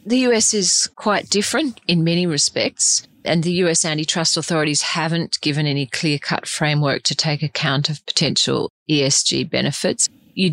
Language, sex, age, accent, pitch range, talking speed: English, female, 40-59, Australian, 140-160 Hz, 150 wpm